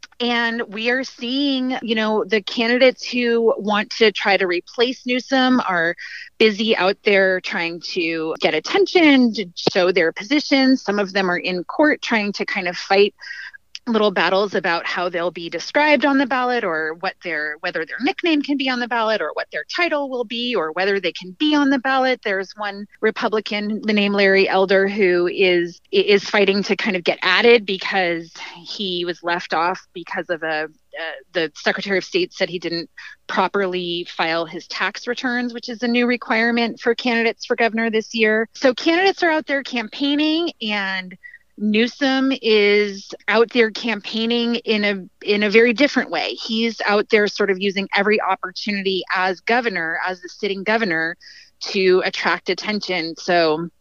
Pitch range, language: 185-240 Hz, English